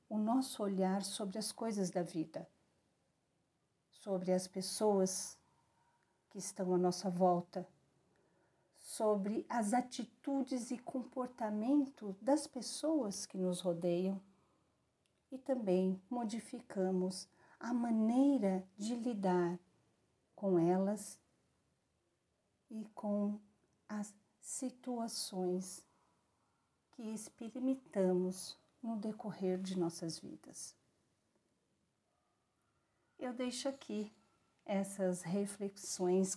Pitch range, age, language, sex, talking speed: 185-235 Hz, 50-69, Portuguese, female, 85 wpm